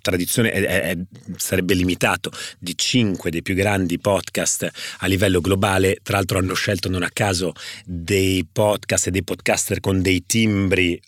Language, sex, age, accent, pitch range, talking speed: Italian, male, 40-59, native, 90-110 Hz, 155 wpm